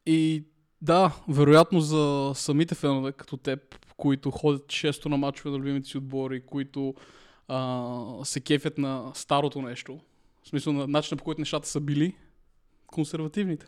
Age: 20-39